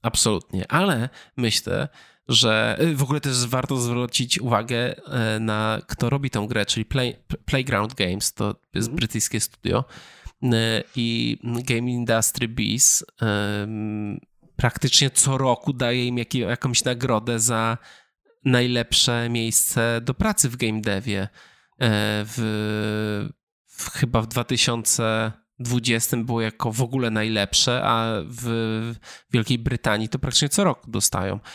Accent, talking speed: native, 110 wpm